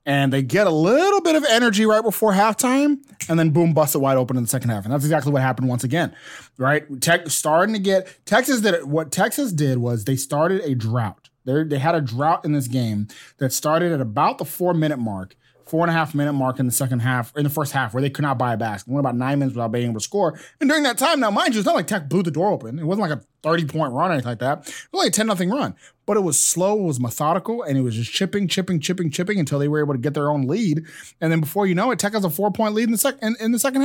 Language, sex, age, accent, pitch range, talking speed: English, male, 20-39, American, 130-185 Hz, 295 wpm